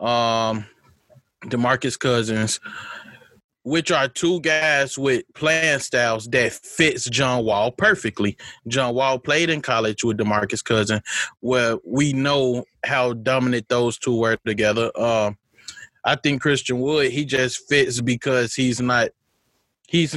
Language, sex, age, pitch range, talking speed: English, male, 20-39, 110-130 Hz, 125 wpm